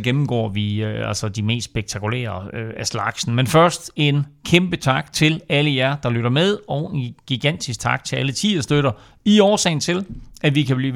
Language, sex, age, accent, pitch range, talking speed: Danish, male, 40-59, native, 115-160 Hz, 210 wpm